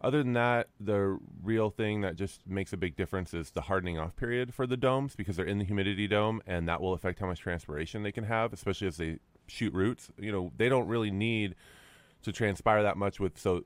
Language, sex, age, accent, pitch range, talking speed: English, male, 30-49, American, 85-105 Hz, 235 wpm